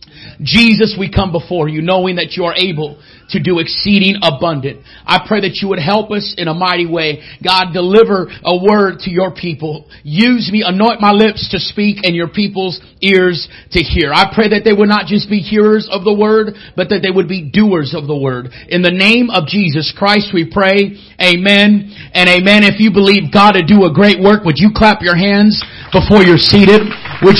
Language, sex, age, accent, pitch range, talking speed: English, male, 40-59, American, 165-215 Hz, 210 wpm